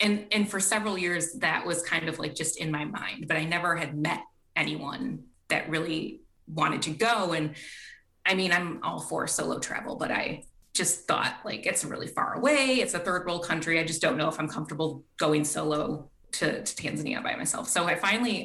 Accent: American